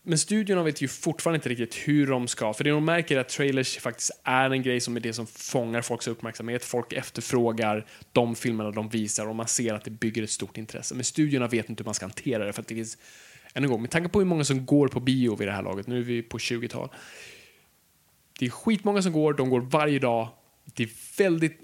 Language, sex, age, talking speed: Swedish, male, 20-39, 245 wpm